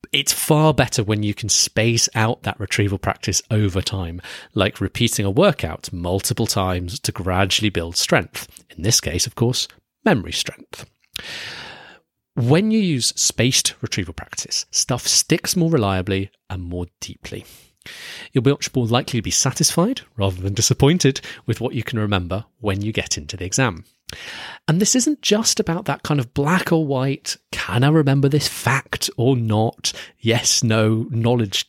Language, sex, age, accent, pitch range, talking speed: English, male, 30-49, British, 105-150 Hz, 165 wpm